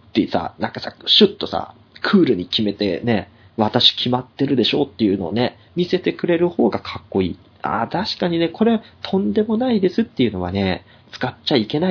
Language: Japanese